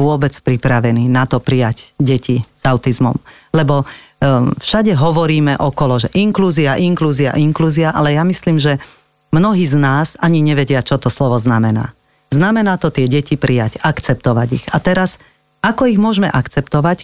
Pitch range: 140-180 Hz